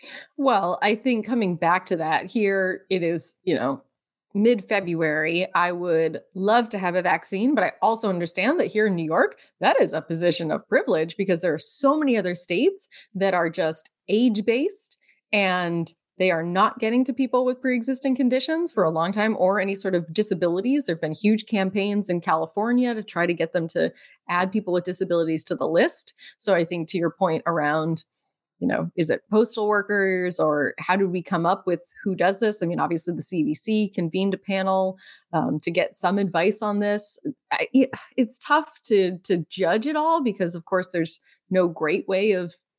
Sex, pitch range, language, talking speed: female, 170-215 Hz, English, 195 wpm